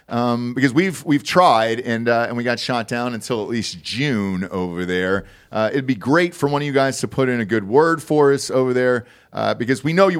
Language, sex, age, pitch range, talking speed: English, male, 40-59, 105-135 Hz, 245 wpm